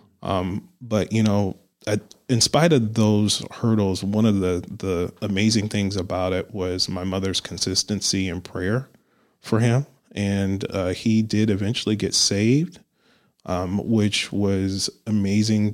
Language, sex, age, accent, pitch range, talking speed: English, male, 30-49, American, 95-110 Hz, 140 wpm